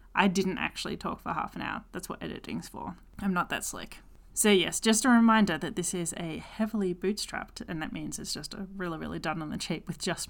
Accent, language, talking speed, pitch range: Australian, English, 240 wpm, 175-220 Hz